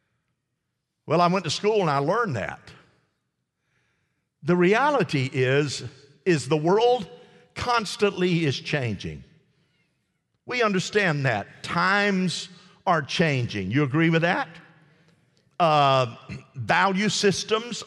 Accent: American